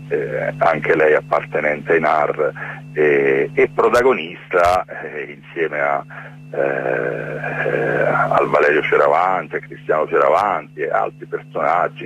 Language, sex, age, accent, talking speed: Italian, male, 40-59, native, 115 wpm